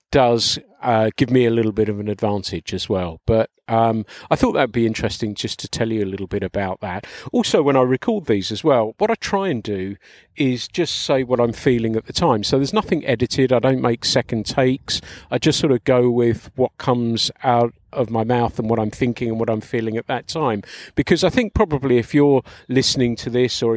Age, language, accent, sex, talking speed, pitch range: 40-59, English, British, male, 230 wpm, 110-135 Hz